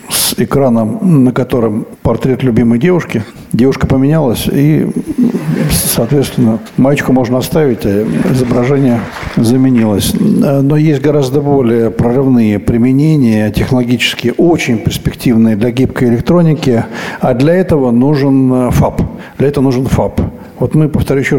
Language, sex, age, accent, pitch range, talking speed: Russian, male, 60-79, native, 115-145 Hz, 120 wpm